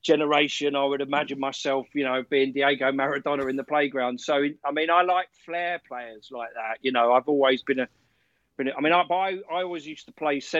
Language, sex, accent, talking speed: English, male, British, 220 wpm